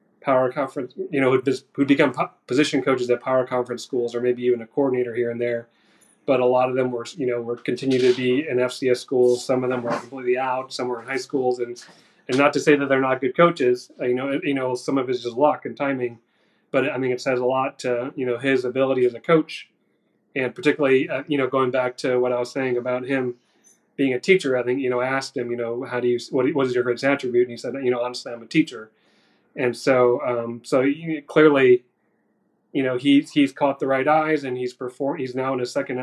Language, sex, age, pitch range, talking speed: English, male, 30-49, 125-135 Hz, 250 wpm